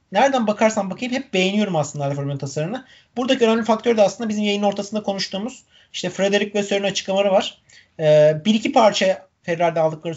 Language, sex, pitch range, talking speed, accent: Turkish, male, 160-215 Hz, 170 wpm, native